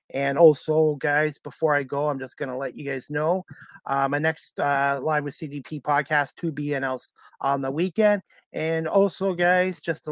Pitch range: 145-165 Hz